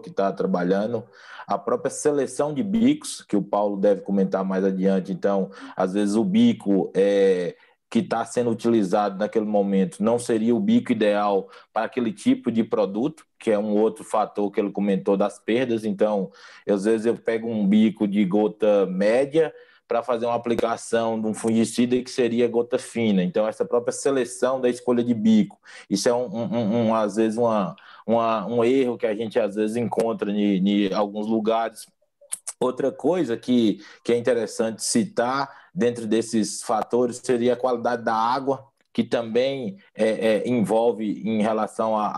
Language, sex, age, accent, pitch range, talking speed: Portuguese, male, 20-39, Brazilian, 105-125 Hz, 165 wpm